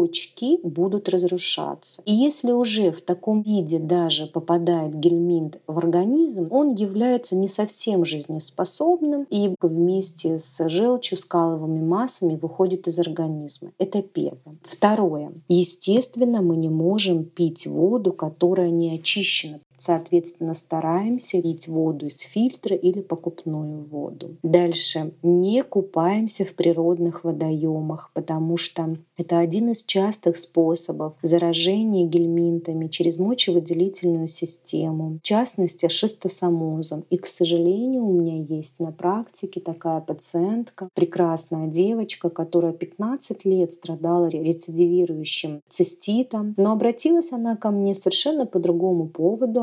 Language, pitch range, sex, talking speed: Russian, 165-195 Hz, female, 115 wpm